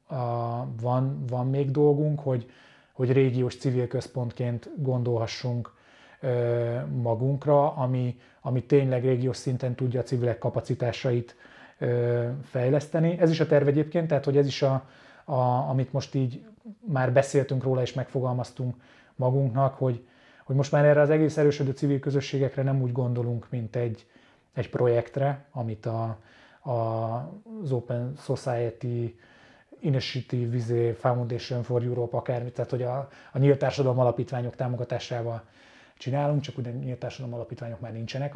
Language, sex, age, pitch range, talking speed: Hungarian, male, 20-39, 120-140 Hz, 130 wpm